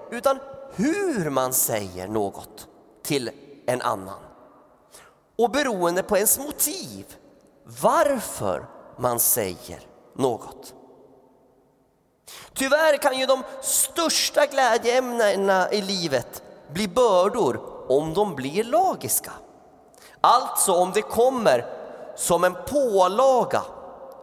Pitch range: 180-275 Hz